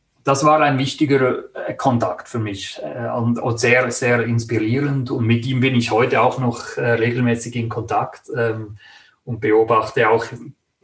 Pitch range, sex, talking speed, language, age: 115-130 Hz, male, 165 wpm, German, 30-49